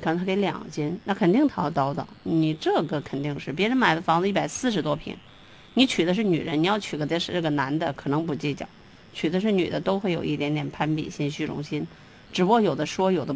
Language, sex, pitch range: Chinese, female, 155-205 Hz